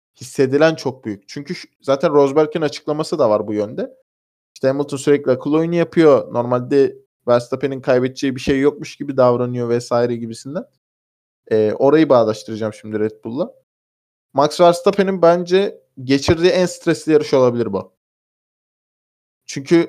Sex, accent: male, native